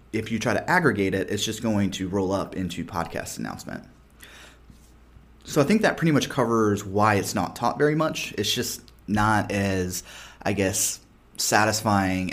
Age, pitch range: 20-39, 95-115 Hz